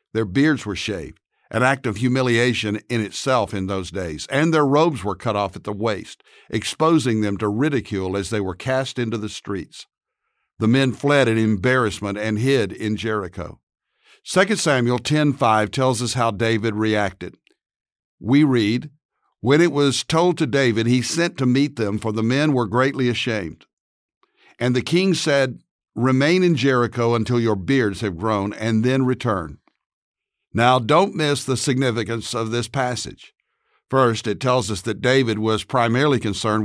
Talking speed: 165 wpm